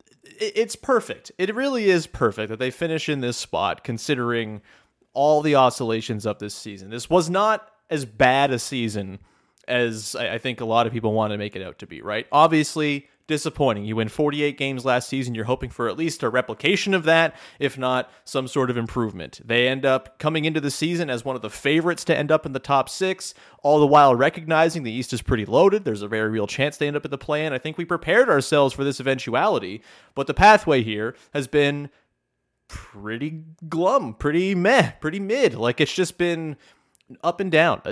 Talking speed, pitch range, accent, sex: 205 wpm, 125-180 Hz, American, male